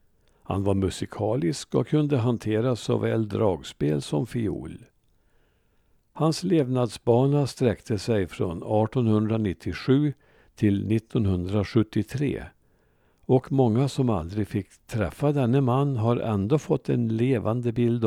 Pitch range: 100-125 Hz